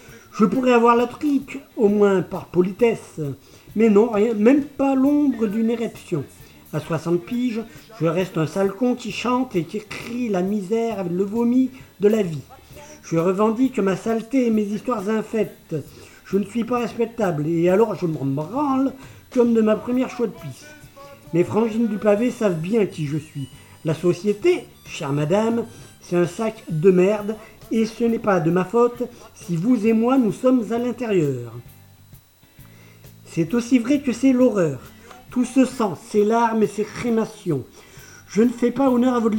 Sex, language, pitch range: male, French, 175-235 Hz